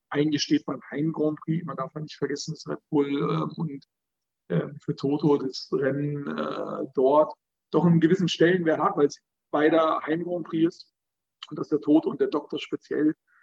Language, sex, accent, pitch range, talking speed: German, male, German, 150-185 Hz, 190 wpm